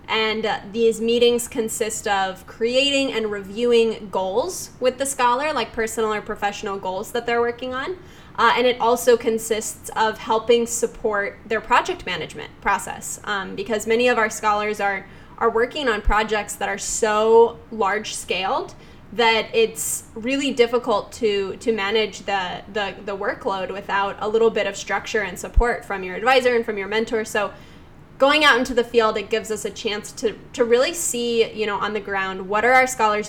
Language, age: English, 10-29